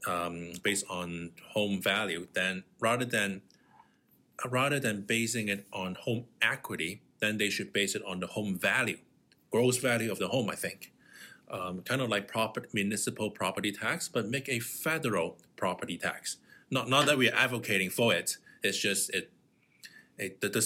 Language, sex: English, male